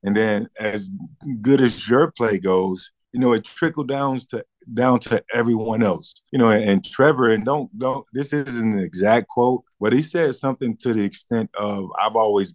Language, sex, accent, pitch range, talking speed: English, male, American, 105-120 Hz, 195 wpm